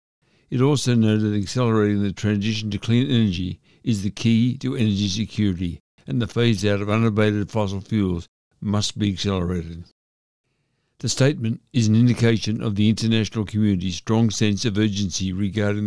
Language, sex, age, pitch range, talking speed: English, male, 60-79, 95-110 Hz, 150 wpm